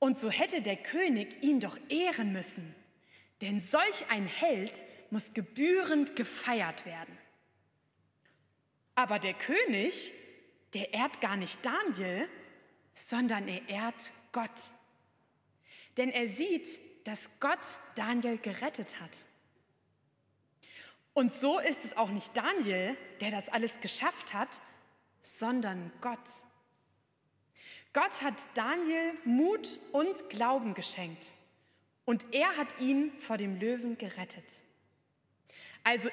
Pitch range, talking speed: 200-285 Hz, 110 wpm